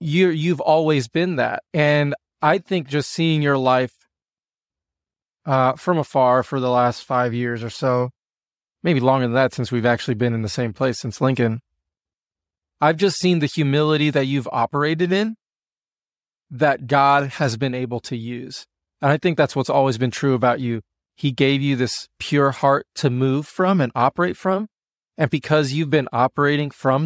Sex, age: male, 20-39